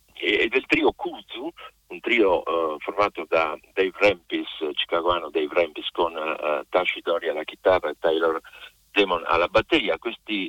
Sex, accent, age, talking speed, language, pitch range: male, native, 50-69, 150 wpm, Italian, 330-445 Hz